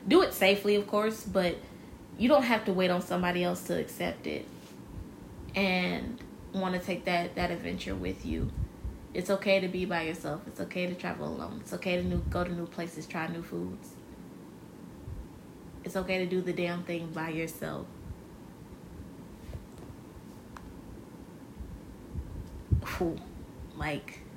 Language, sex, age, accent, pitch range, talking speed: English, female, 20-39, American, 170-195 Hz, 145 wpm